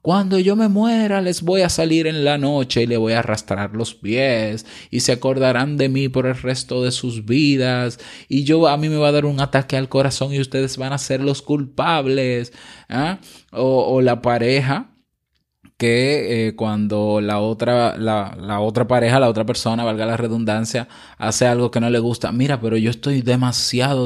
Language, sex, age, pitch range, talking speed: Spanish, male, 20-39, 110-145 Hz, 195 wpm